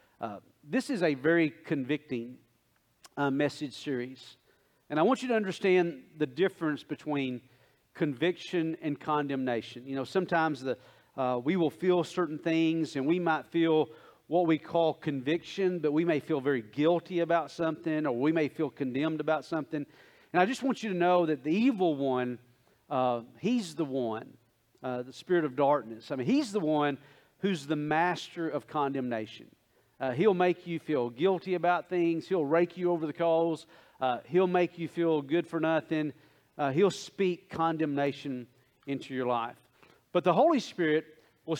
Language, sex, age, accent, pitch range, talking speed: English, male, 40-59, American, 140-180 Hz, 170 wpm